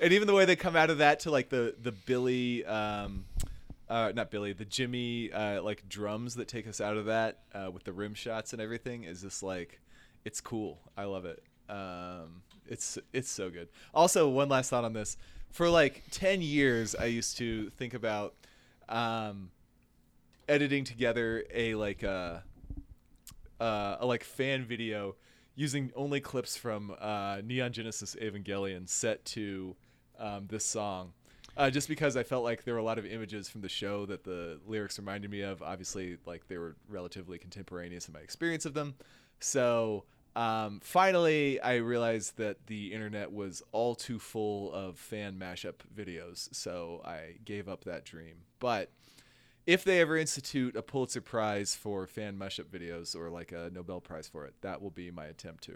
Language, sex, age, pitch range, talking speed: English, male, 20-39, 95-120 Hz, 180 wpm